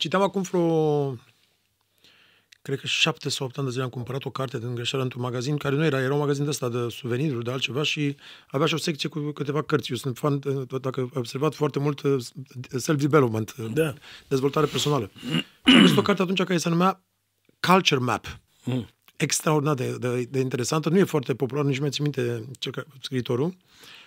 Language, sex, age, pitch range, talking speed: Romanian, male, 30-49, 135-170 Hz, 185 wpm